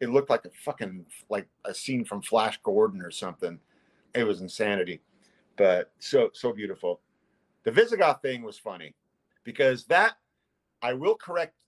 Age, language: 40-59, English